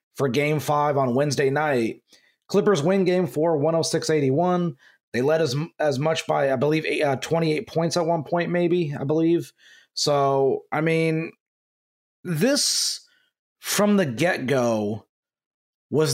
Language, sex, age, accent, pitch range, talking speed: English, male, 30-49, American, 145-180 Hz, 140 wpm